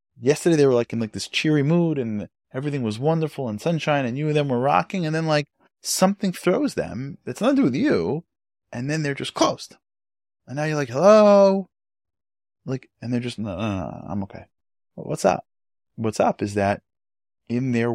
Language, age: English, 20-39